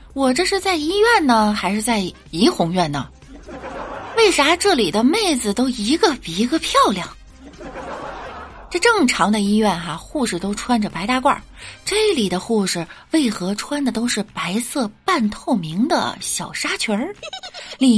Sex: female